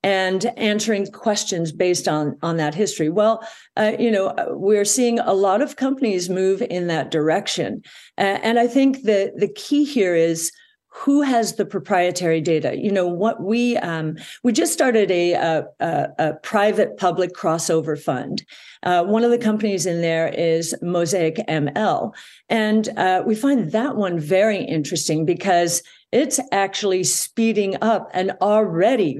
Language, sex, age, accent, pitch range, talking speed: English, female, 50-69, American, 165-215 Hz, 155 wpm